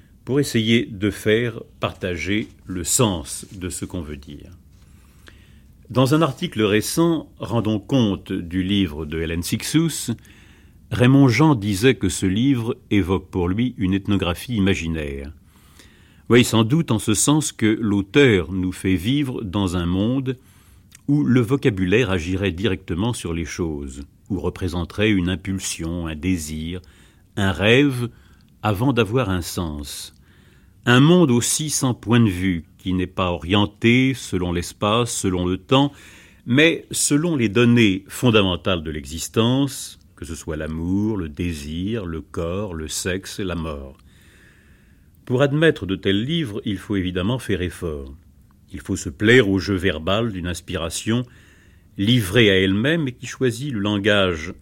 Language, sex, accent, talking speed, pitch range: French, male, French, 145 wpm, 90-115 Hz